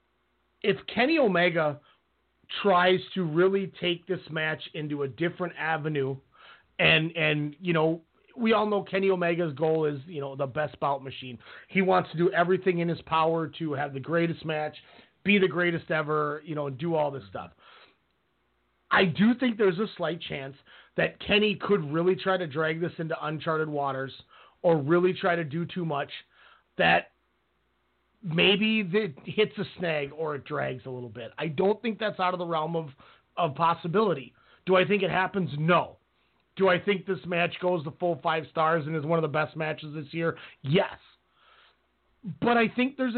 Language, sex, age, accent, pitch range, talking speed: English, male, 30-49, American, 155-190 Hz, 185 wpm